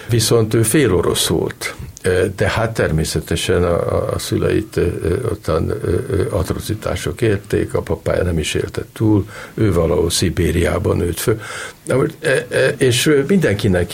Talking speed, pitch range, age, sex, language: 115 wpm, 90-110 Hz, 50-69, male, Hungarian